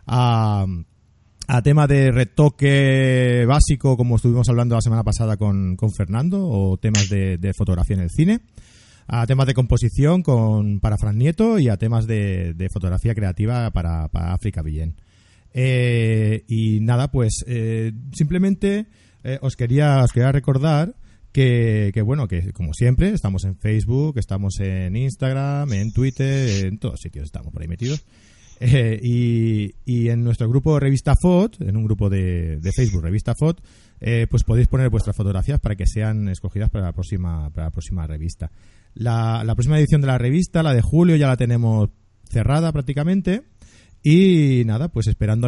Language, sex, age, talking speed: Spanish, male, 30-49, 170 wpm